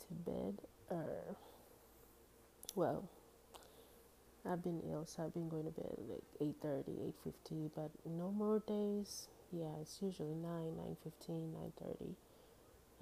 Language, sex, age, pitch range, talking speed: English, female, 30-49, 150-185 Hz, 150 wpm